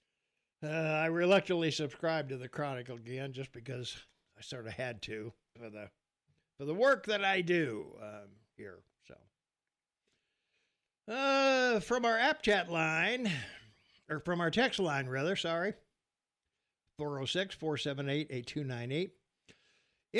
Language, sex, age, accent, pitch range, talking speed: English, male, 60-79, American, 150-200 Hz, 120 wpm